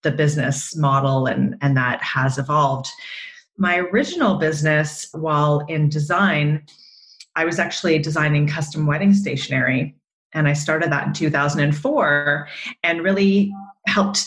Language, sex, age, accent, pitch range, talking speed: English, female, 30-49, American, 145-190 Hz, 120 wpm